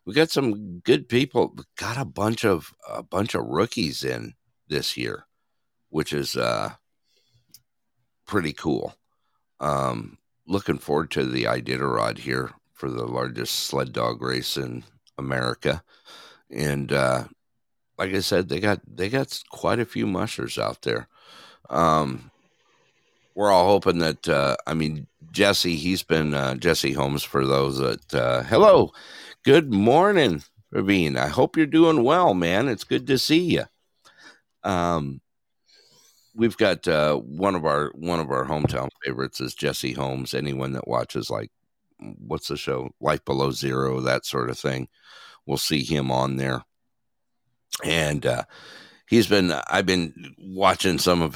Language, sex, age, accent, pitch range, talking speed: English, male, 60-79, American, 65-95 Hz, 150 wpm